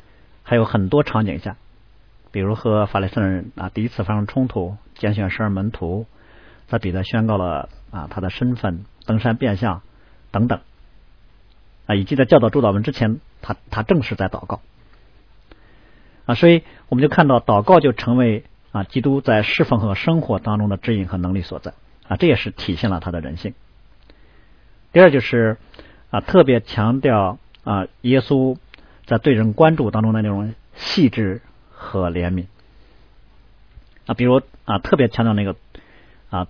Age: 50-69